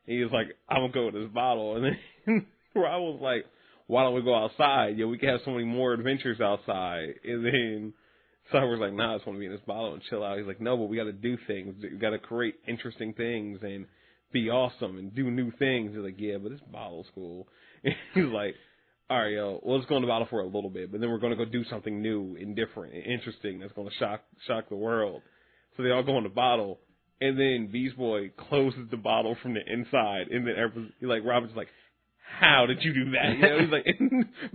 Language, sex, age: English, male, 30-49